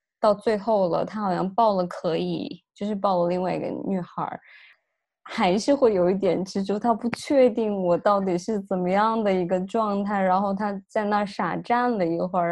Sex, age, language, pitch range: female, 20-39, Chinese, 190-245 Hz